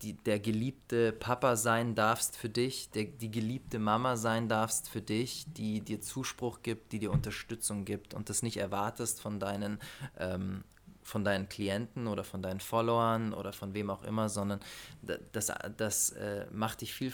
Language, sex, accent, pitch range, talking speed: German, male, German, 105-120 Hz, 165 wpm